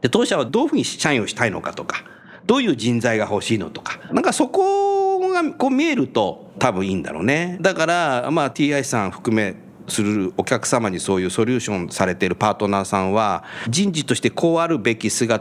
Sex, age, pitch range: male, 50-69, 115-185 Hz